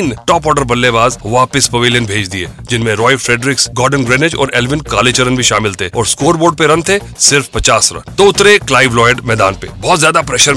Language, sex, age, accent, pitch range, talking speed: Hindi, male, 30-49, native, 125-180 Hz, 205 wpm